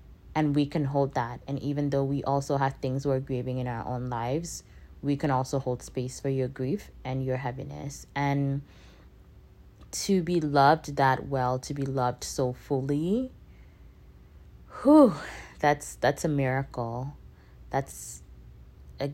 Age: 20-39